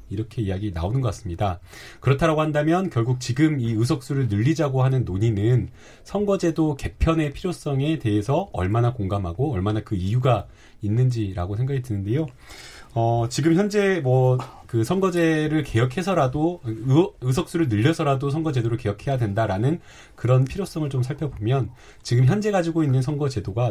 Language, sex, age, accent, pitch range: Korean, male, 30-49, native, 105-140 Hz